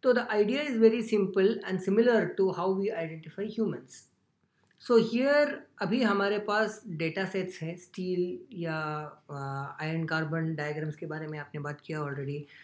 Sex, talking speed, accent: female, 160 wpm, native